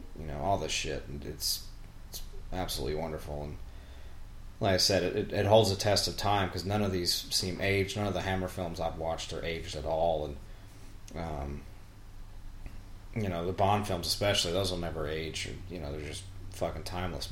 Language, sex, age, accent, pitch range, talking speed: English, male, 30-49, American, 85-100 Hz, 200 wpm